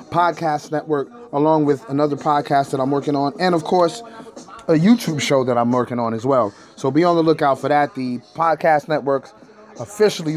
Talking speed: 190 wpm